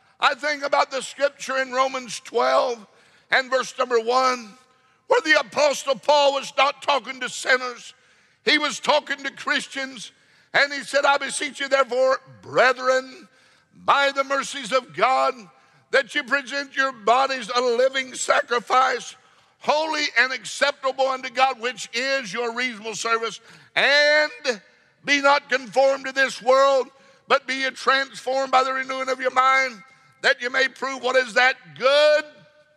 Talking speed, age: 150 wpm, 60-79